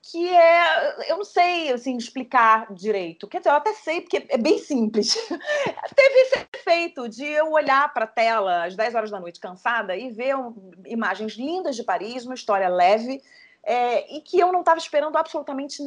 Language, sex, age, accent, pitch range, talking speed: Portuguese, female, 30-49, Brazilian, 225-320 Hz, 180 wpm